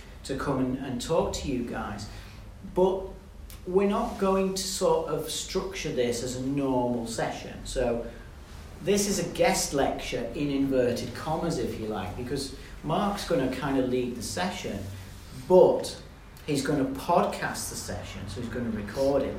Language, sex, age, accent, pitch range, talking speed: English, male, 40-59, British, 105-135 Hz, 165 wpm